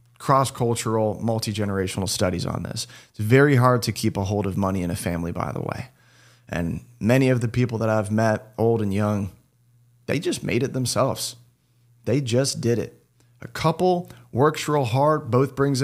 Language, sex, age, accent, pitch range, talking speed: English, male, 30-49, American, 105-125 Hz, 180 wpm